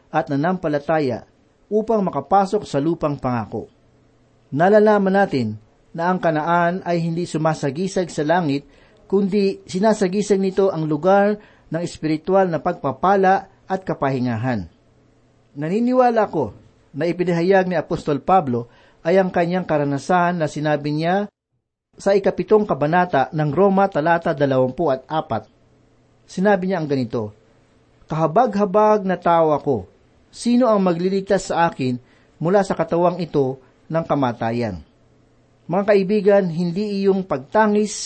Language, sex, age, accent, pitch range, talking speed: Filipino, male, 50-69, native, 135-190 Hz, 115 wpm